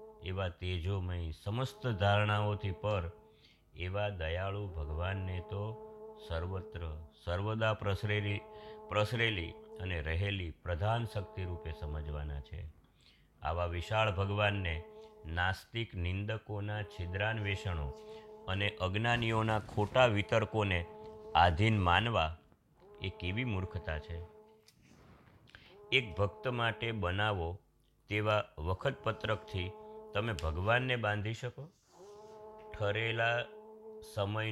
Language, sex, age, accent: Gujarati, male, 50-69, native